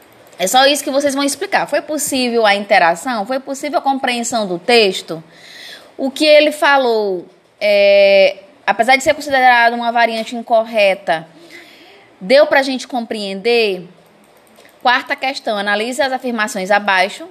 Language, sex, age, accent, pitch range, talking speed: Portuguese, female, 20-39, Brazilian, 225-285 Hz, 135 wpm